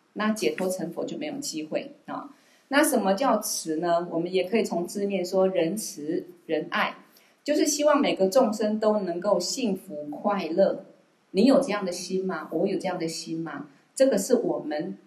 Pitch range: 175-255 Hz